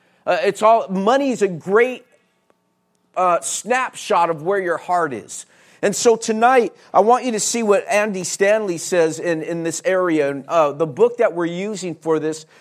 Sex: male